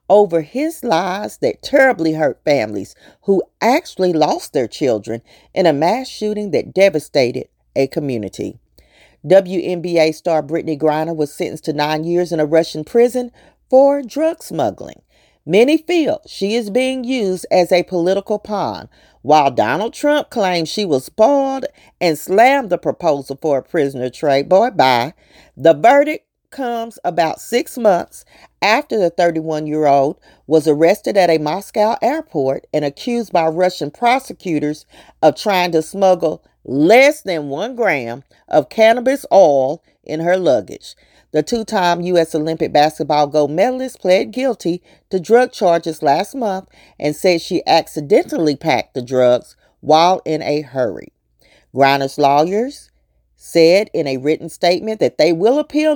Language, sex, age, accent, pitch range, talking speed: English, female, 40-59, American, 150-220 Hz, 145 wpm